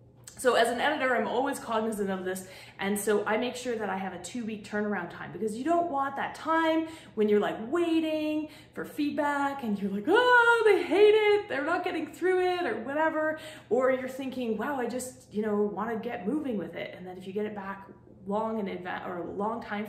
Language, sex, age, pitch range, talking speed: English, female, 30-49, 205-315 Hz, 225 wpm